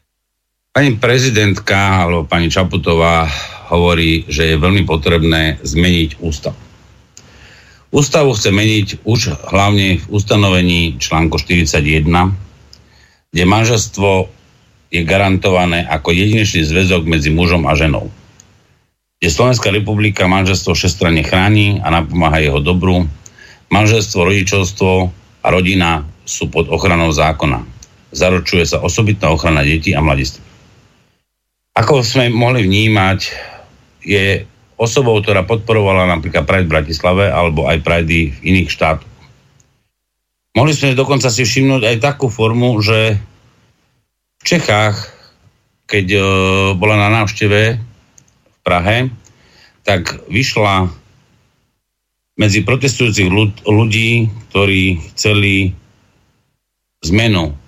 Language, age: Slovak, 50-69